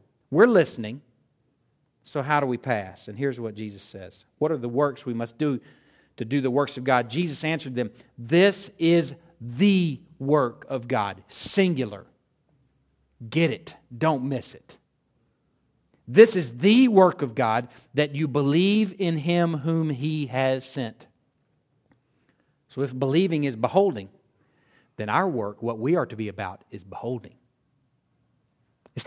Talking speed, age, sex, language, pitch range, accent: 150 wpm, 50-69, male, English, 125-165 Hz, American